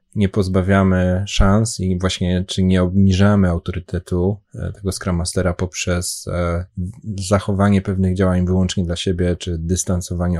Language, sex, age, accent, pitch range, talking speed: Polish, male, 20-39, native, 90-100 Hz, 115 wpm